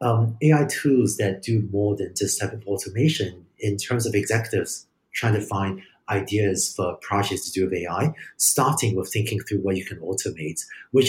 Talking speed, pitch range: 185 wpm, 95-115 Hz